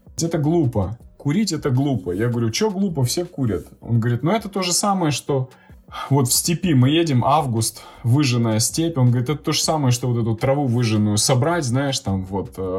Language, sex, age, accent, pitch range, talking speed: Russian, male, 20-39, native, 105-135 Hz, 195 wpm